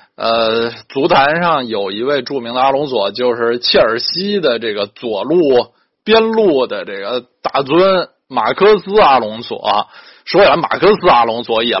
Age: 20-39